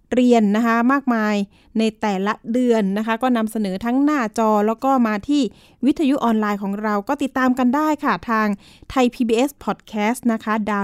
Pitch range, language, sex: 210-260 Hz, Thai, female